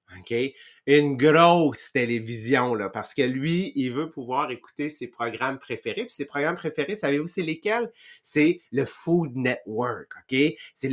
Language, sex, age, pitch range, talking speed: English, male, 30-49, 125-170 Hz, 155 wpm